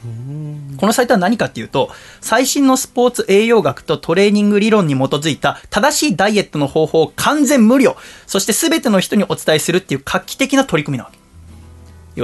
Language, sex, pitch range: Japanese, male, 140-215 Hz